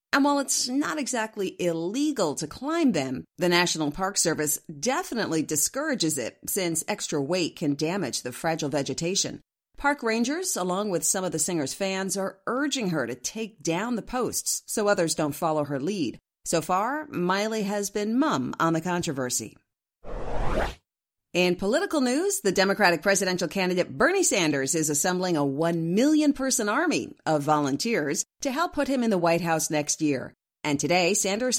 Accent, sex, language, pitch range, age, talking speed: American, female, English, 155-240 Hz, 40-59, 160 wpm